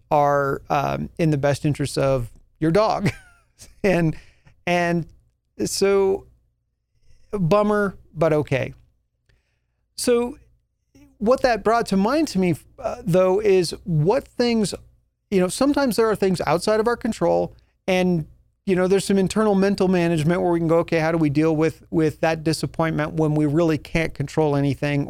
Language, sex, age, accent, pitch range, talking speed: English, male, 40-59, American, 150-195 Hz, 155 wpm